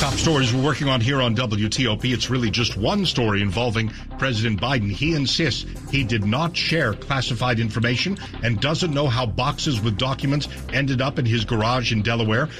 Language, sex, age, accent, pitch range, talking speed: English, male, 50-69, American, 110-145 Hz, 180 wpm